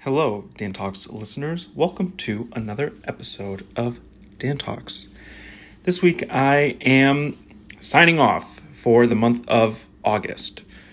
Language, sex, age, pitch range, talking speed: English, male, 30-49, 100-120 Hz, 120 wpm